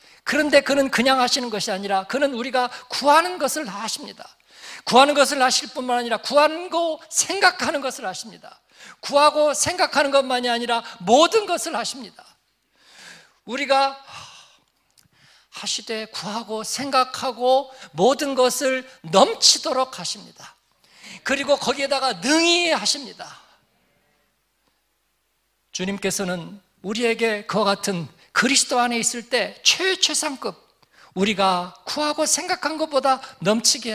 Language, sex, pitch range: Korean, male, 195-275 Hz